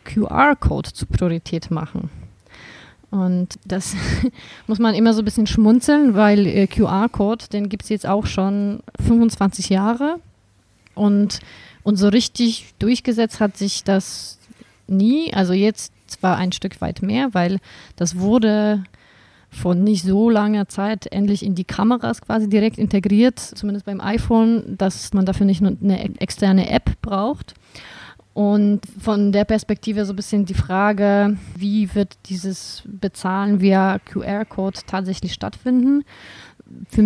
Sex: female